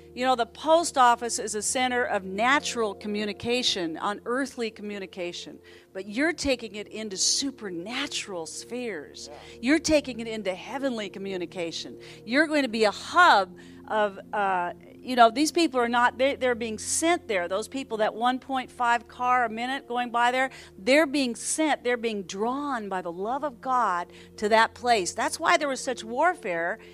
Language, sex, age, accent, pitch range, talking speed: English, female, 50-69, American, 230-320 Hz, 165 wpm